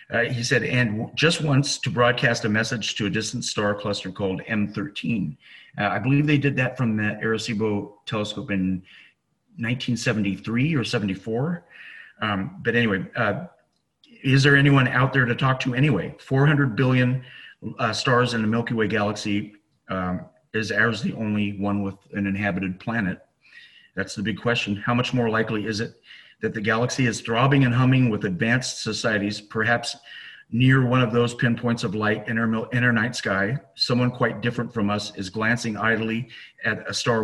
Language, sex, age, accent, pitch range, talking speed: English, male, 40-59, American, 105-125 Hz, 170 wpm